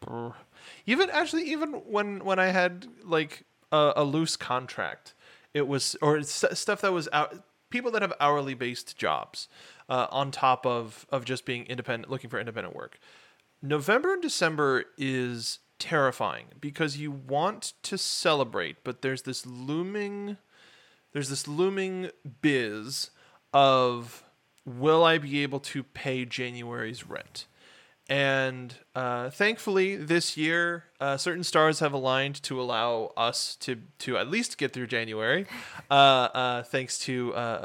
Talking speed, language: 140 wpm, English